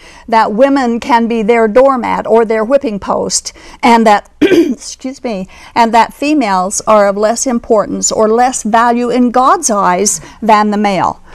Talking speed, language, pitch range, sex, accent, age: 160 wpm, English, 220-275 Hz, female, American, 50-69